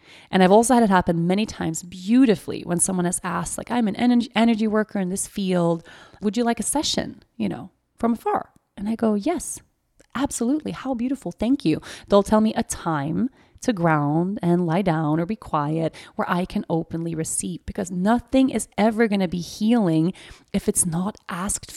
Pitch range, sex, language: 170-230 Hz, female, English